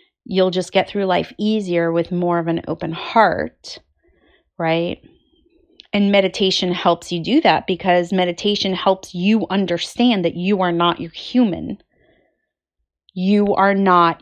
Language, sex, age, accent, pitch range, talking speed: English, female, 30-49, American, 175-215 Hz, 140 wpm